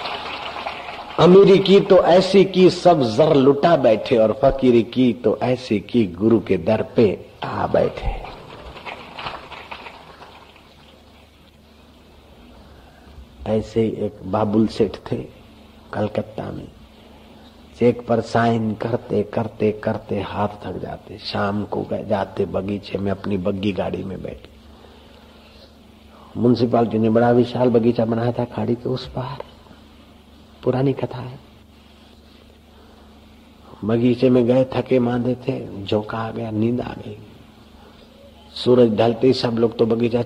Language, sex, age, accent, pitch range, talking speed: Hindi, male, 50-69, native, 85-120 Hz, 120 wpm